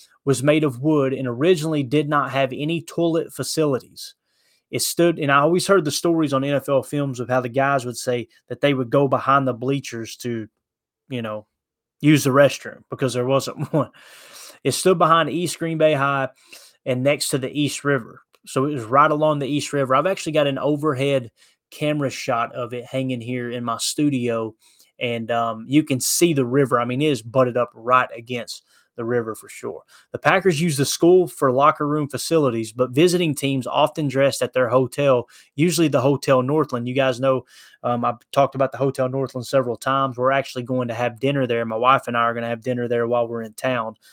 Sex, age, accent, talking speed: male, 20-39, American, 210 wpm